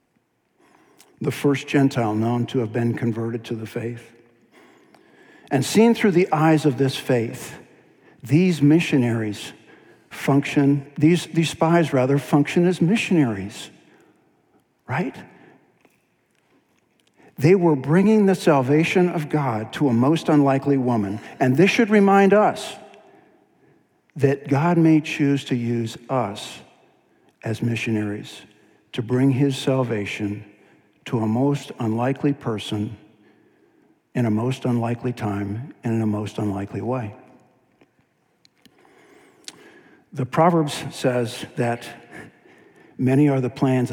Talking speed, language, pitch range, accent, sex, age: 115 wpm, English, 115-155 Hz, American, male, 60-79